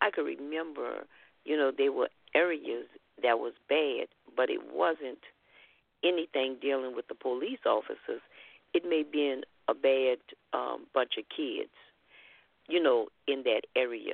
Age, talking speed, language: 50-69, 150 wpm, English